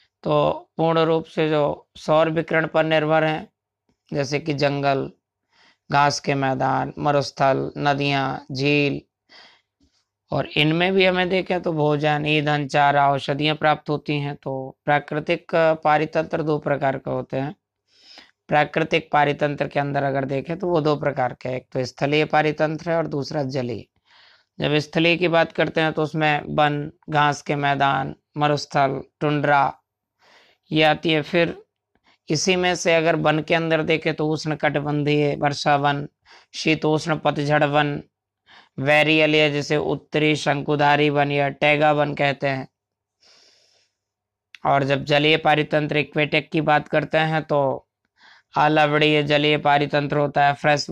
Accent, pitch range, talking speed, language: native, 140-155 Hz, 140 wpm, Hindi